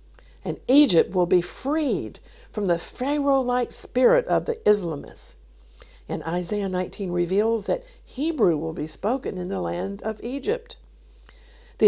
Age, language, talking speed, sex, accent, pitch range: 50-69, English, 135 wpm, female, American, 165-235 Hz